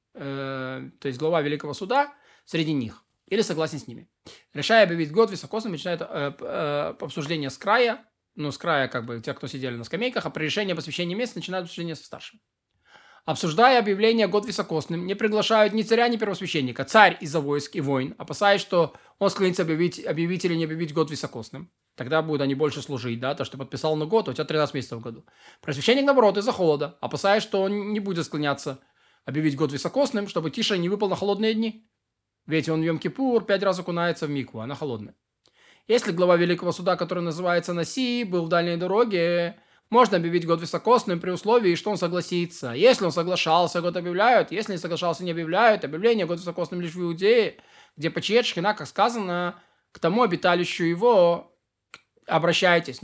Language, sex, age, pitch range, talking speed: Russian, male, 20-39, 155-200 Hz, 185 wpm